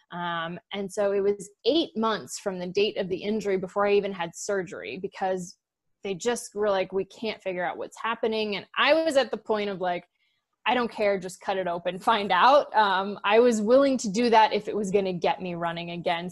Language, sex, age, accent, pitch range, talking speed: English, female, 20-39, American, 185-230 Hz, 230 wpm